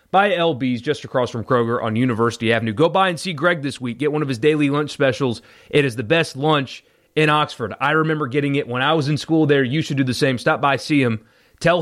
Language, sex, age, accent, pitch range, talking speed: English, male, 30-49, American, 125-150 Hz, 255 wpm